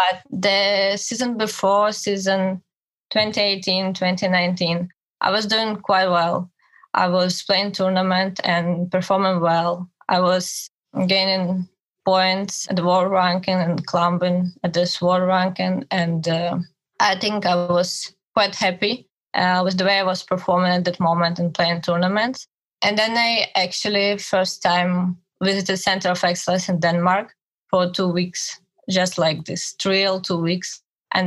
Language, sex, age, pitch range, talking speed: English, female, 20-39, 180-195 Hz, 150 wpm